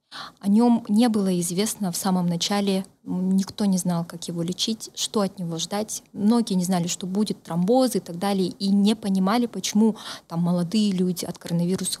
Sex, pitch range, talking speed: female, 185-220 Hz, 180 wpm